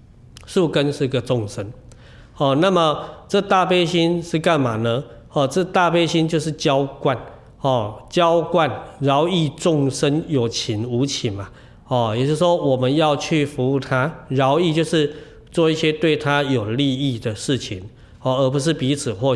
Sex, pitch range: male, 120-155 Hz